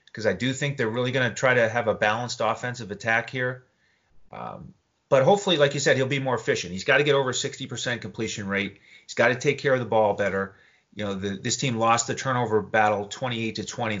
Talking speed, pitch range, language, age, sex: 235 wpm, 110-145 Hz, English, 30-49, male